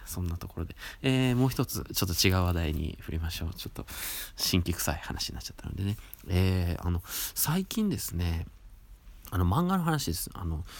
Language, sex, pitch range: Japanese, male, 85-120 Hz